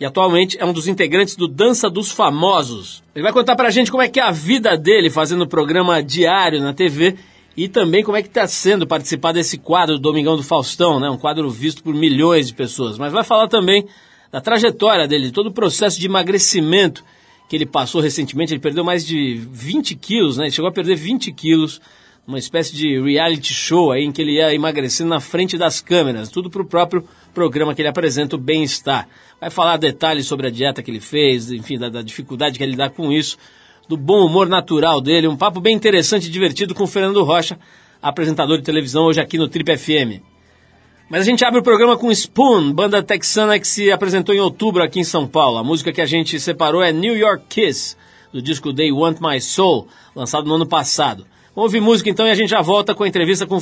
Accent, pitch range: Brazilian, 150-195 Hz